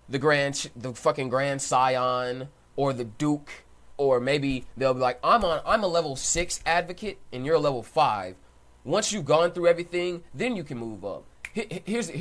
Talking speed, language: 180 wpm, English